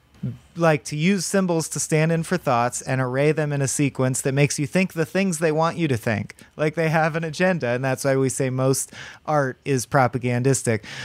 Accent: American